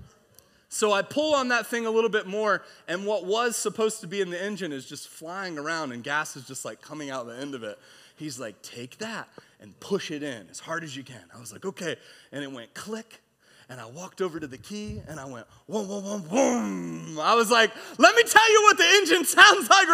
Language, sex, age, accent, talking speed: English, male, 30-49, American, 245 wpm